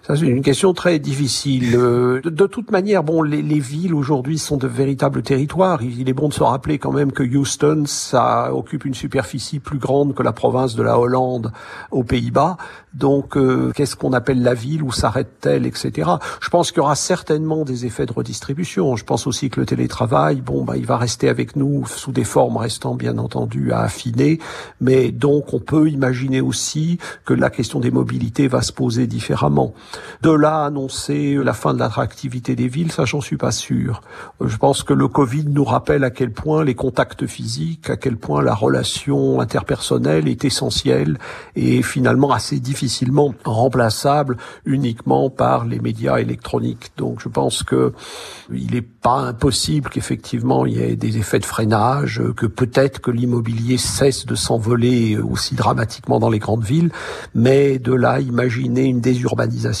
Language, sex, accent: French, male, French